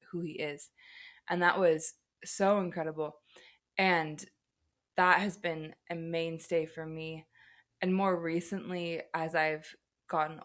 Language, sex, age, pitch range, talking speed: English, female, 20-39, 160-185 Hz, 125 wpm